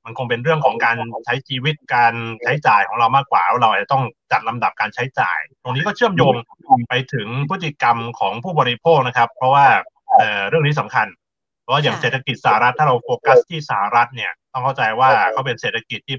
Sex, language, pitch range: male, Thai, 115-150 Hz